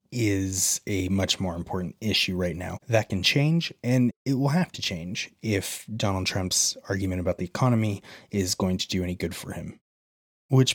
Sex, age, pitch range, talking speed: male, 30-49, 90-120 Hz, 185 wpm